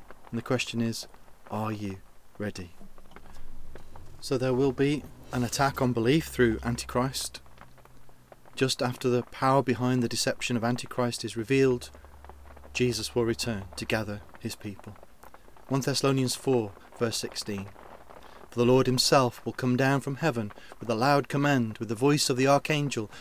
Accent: British